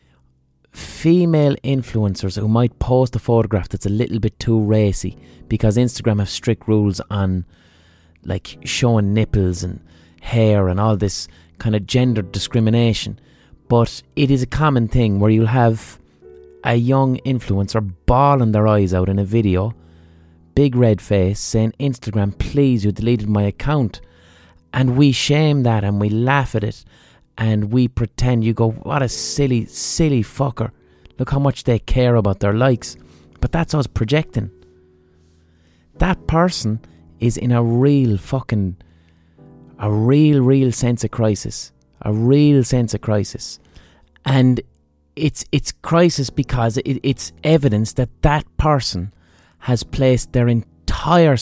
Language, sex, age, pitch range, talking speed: English, male, 20-39, 95-125 Hz, 145 wpm